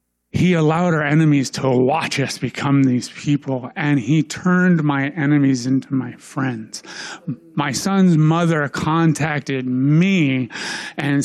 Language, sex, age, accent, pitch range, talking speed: English, male, 30-49, American, 135-165 Hz, 130 wpm